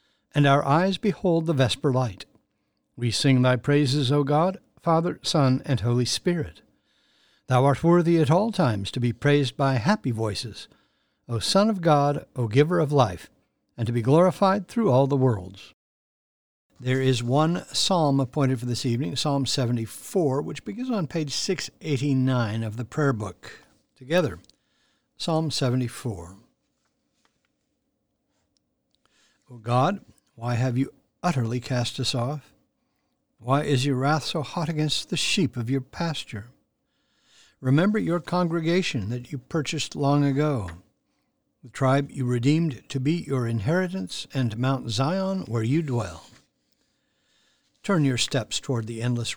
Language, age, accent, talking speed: English, 60-79, American, 140 wpm